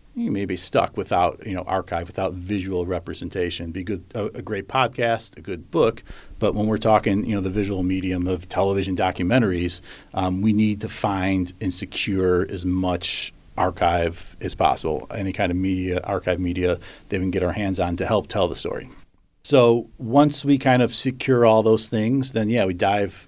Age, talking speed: 40-59, 195 wpm